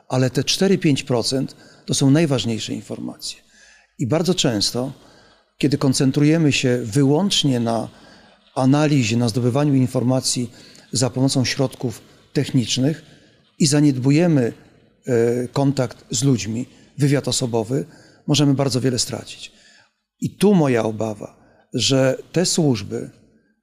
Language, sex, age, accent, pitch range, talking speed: Polish, male, 40-59, native, 125-155 Hz, 105 wpm